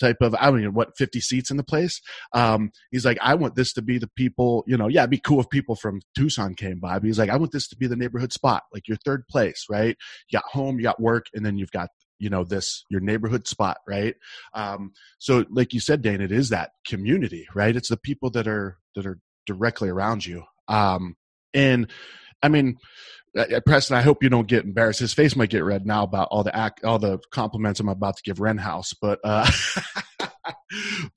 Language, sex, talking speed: English, male, 230 wpm